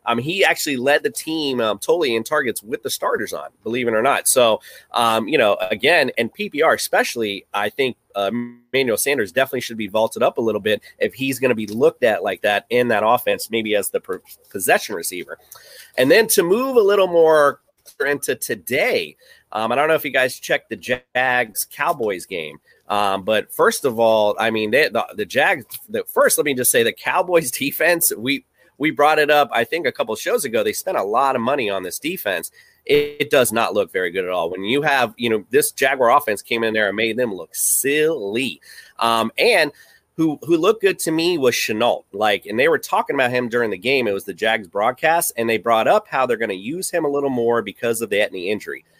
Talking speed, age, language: 225 wpm, 30-49, English